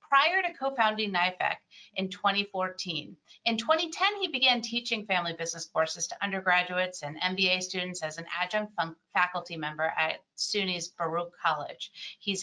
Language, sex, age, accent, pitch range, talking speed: English, female, 40-59, American, 180-230 Hz, 140 wpm